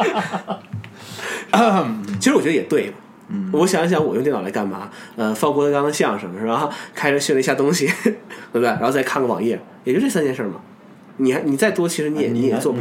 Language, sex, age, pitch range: Chinese, male, 20-39, 130-205 Hz